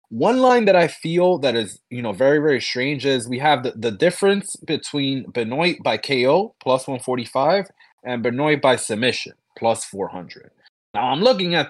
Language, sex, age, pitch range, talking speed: English, male, 20-39, 120-170 Hz, 175 wpm